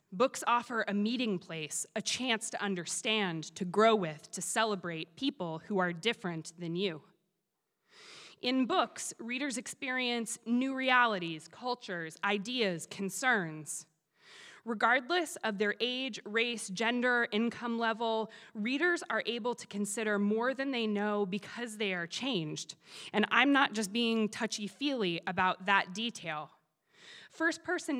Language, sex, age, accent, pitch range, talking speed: English, female, 20-39, American, 185-245 Hz, 130 wpm